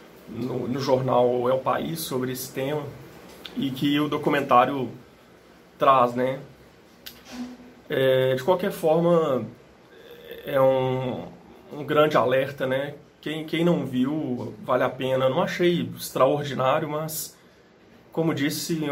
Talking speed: 125 wpm